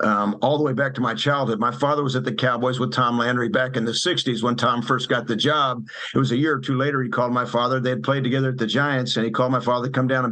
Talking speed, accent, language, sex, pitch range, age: 315 wpm, American, English, male, 120-135 Hz, 50-69